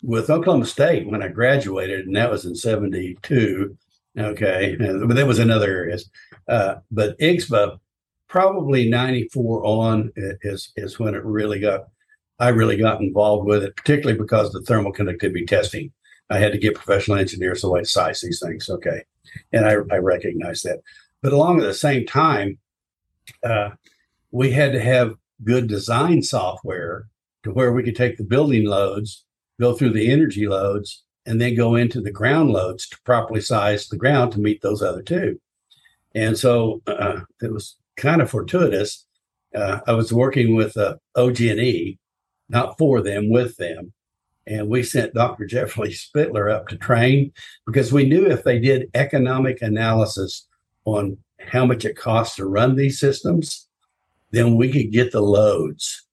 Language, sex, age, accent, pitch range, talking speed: English, male, 60-79, American, 105-125 Hz, 170 wpm